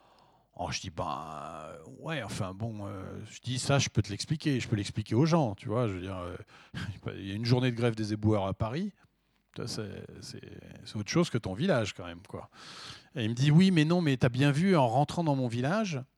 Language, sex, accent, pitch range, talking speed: French, male, French, 115-155 Hz, 250 wpm